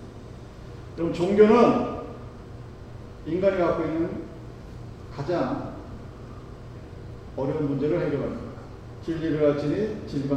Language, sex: Korean, male